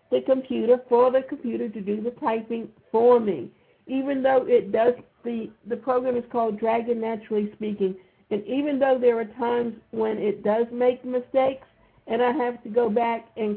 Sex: female